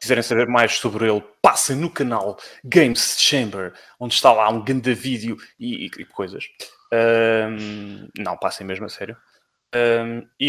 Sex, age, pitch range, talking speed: male, 20-39, 110-130 Hz, 160 wpm